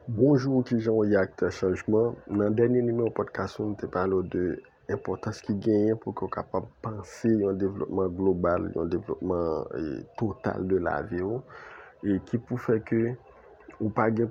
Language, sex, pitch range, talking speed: French, male, 95-115 Hz, 165 wpm